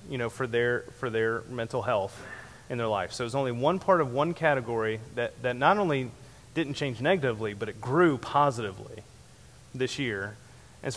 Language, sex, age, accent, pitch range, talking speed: English, male, 30-49, American, 120-150 Hz, 180 wpm